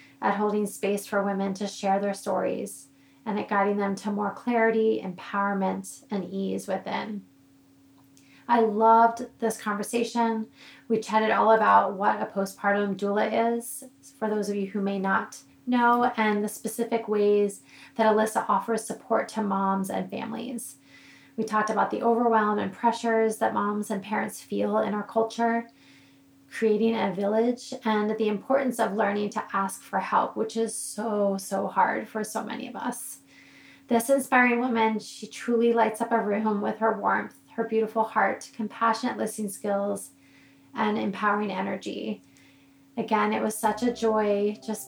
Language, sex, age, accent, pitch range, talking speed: English, female, 20-39, American, 200-230 Hz, 160 wpm